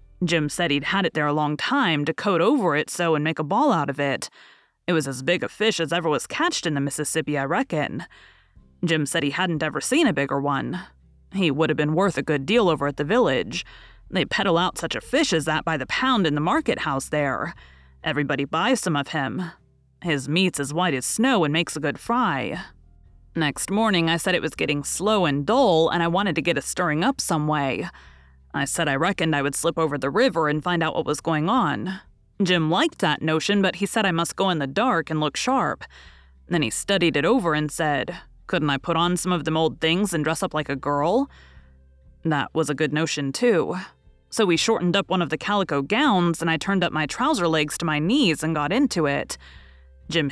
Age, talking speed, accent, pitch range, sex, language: 30-49, 230 wpm, American, 145-180 Hz, female, English